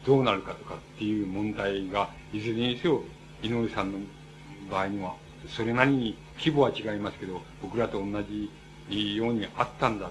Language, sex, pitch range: Japanese, male, 100-130 Hz